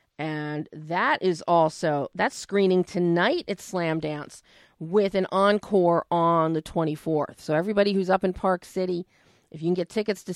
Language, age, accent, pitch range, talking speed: English, 40-59, American, 165-195 Hz, 170 wpm